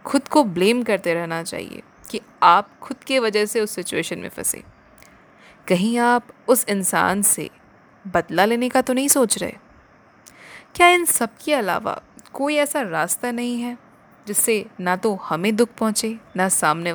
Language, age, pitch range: Hindi, 20-39, 185-250 Hz